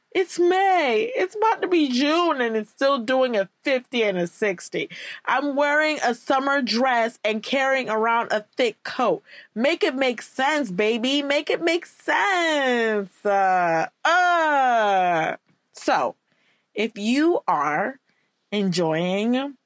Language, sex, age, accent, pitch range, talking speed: English, female, 20-39, American, 180-275 Hz, 130 wpm